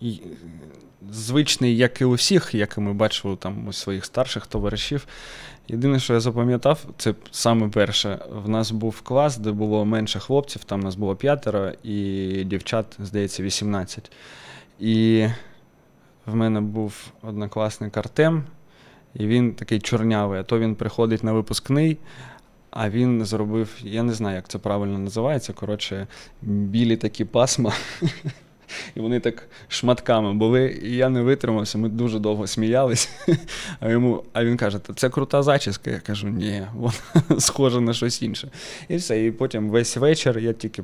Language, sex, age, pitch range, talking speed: Ukrainian, male, 20-39, 105-125 Hz, 155 wpm